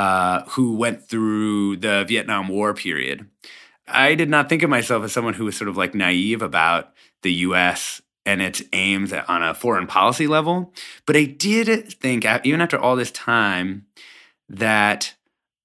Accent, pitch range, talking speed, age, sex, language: American, 100-130 Hz, 170 wpm, 30-49, male, English